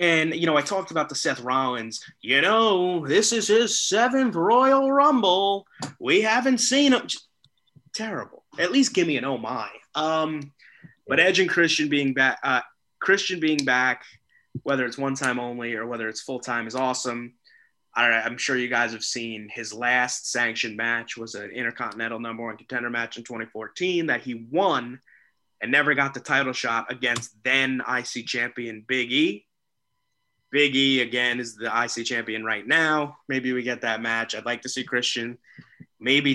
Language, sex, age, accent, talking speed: English, male, 20-39, American, 175 wpm